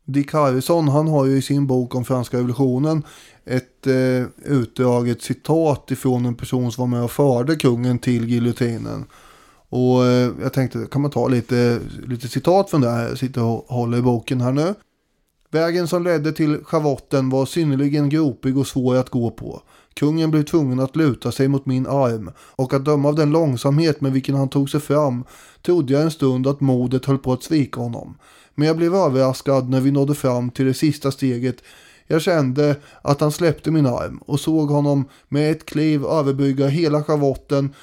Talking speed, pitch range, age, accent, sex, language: 190 wpm, 130-150 Hz, 20-39, Swedish, male, English